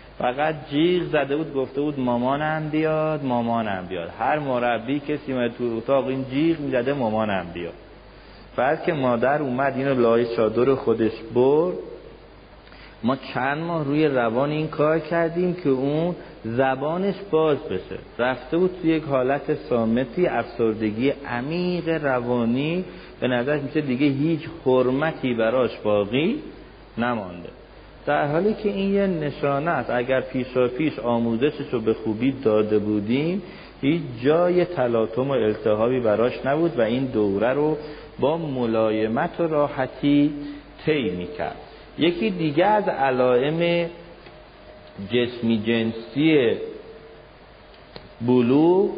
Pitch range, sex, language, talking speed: 120-160 Hz, male, Persian, 120 wpm